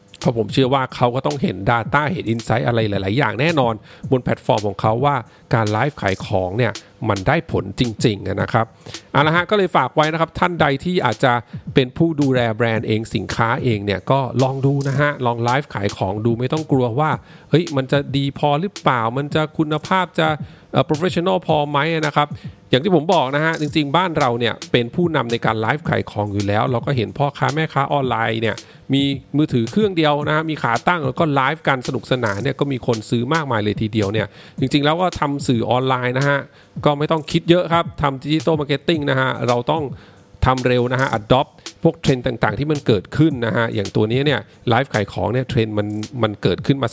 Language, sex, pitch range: English, male, 115-150 Hz